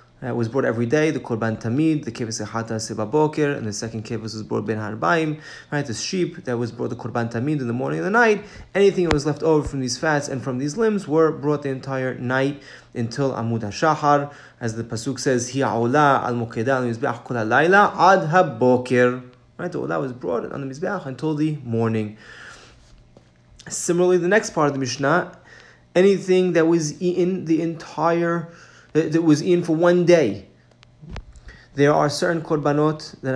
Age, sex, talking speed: 30-49, male, 180 wpm